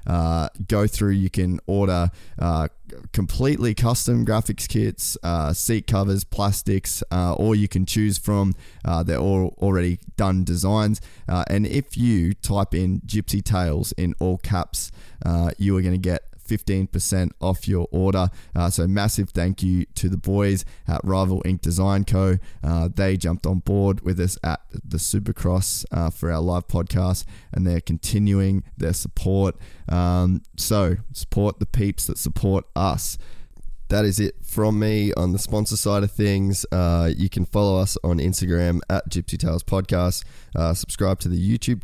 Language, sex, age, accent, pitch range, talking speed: English, male, 20-39, Australian, 85-100 Hz, 165 wpm